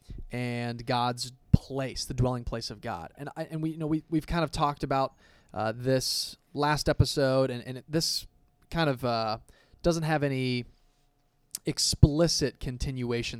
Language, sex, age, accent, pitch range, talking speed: English, male, 20-39, American, 120-140 Hz, 150 wpm